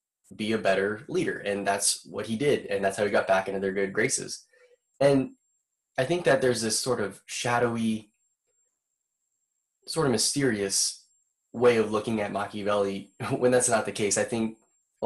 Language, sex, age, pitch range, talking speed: English, male, 10-29, 105-135 Hz, 175 wpm